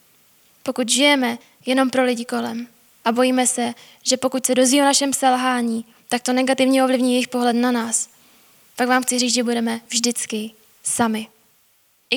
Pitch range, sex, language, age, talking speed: 235-255 Hz, female, Czech, 10-29, 165 wpm